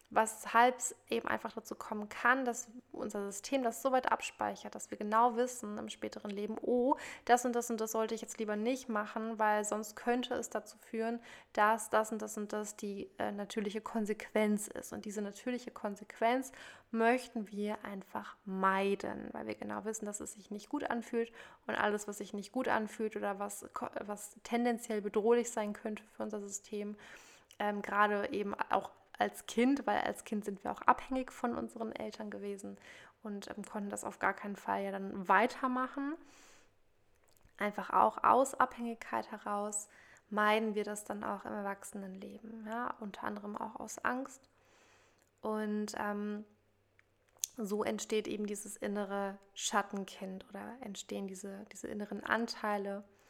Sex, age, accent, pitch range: female, 20-39, German, 205-235 Hz